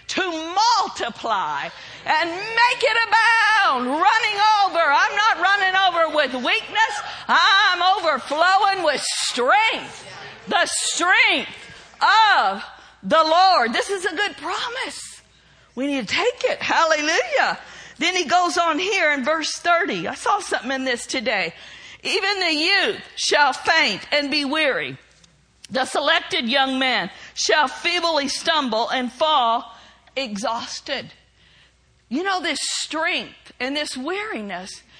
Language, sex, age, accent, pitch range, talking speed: English, female, 50-69, American, 295-390 Hz, 125 wpm